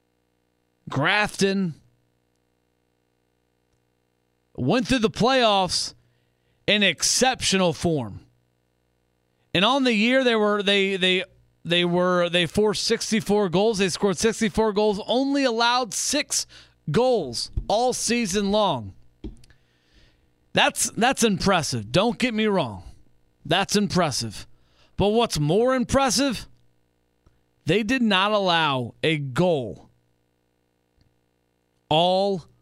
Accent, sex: American, male